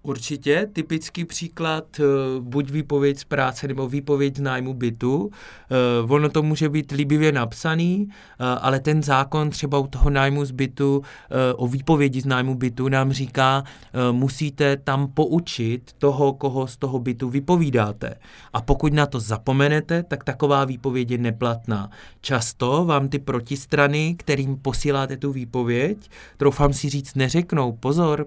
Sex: male